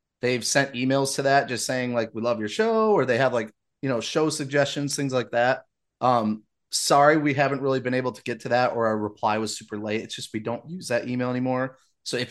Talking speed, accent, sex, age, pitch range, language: 245 wpm, American, male, 30-49, 115-145 Hz, English